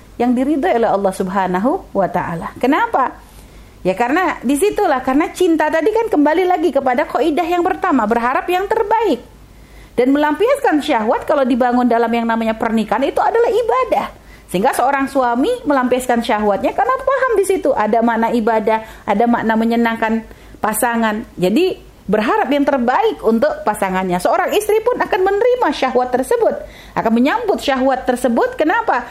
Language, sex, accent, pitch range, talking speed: Indonesian, female, native, 230-340 Hz, 140 wpm